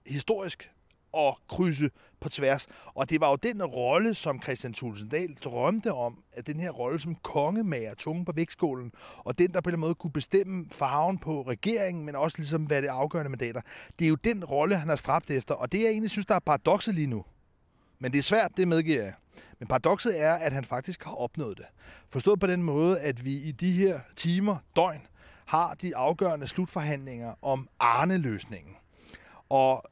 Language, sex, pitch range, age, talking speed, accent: Danish, male, 135-185 Hz, 30-49, 195 wpm, native